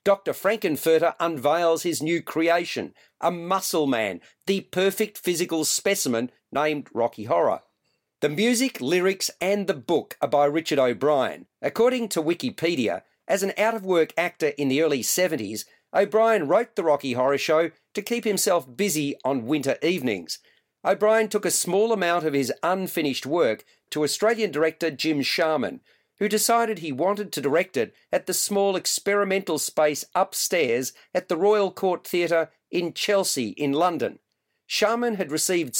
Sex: male